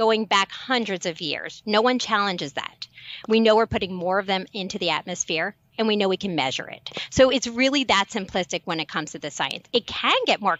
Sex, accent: female, American